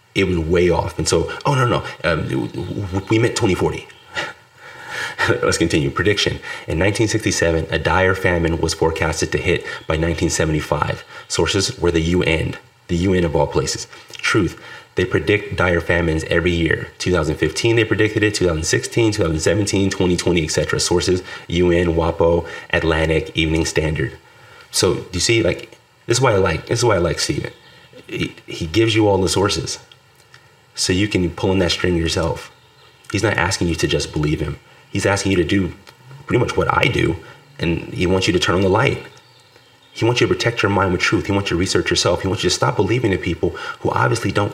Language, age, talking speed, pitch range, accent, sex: English, 30-49, 190 wpm, 85-105 Hz, American, male